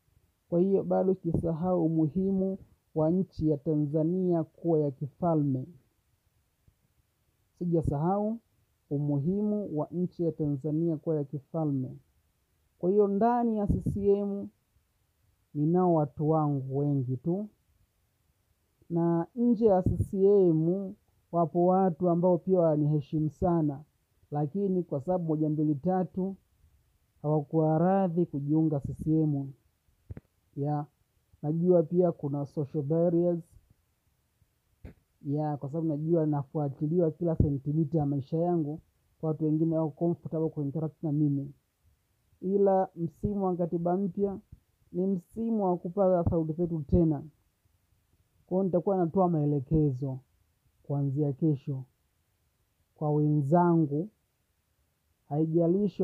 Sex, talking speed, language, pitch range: male, 100 wpm, Swahili, 135-175 Hz